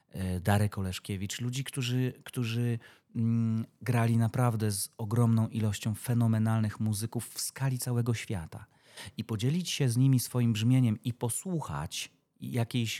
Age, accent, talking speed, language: 30-49, native, 120 wpm, Polish